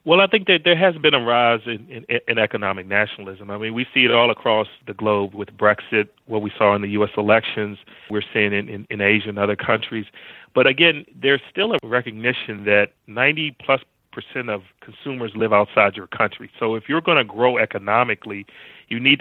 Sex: male